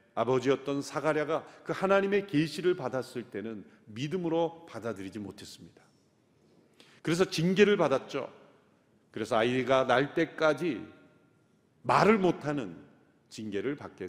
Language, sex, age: Korean, male, 40-59